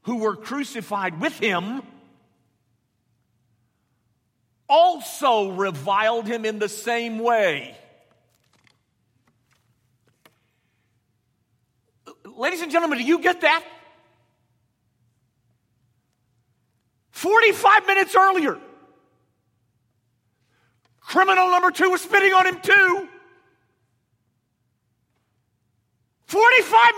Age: 50-69